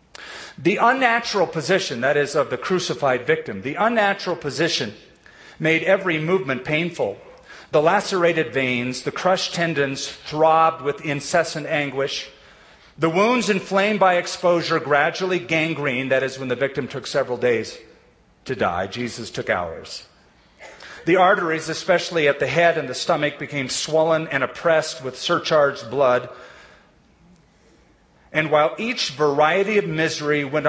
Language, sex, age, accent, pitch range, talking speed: English, male, 40-59, American, 135-165 Hz, 135 wpm